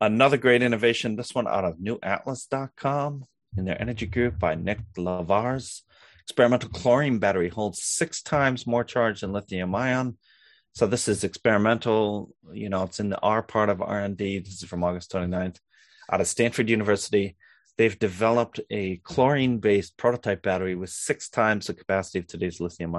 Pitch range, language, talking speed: 90-110 Hz, English, 160 wpm